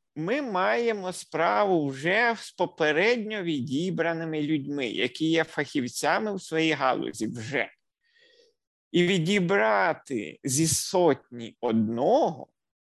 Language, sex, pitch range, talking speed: Ukrainian, male, 140-215 Hz, 95 wpm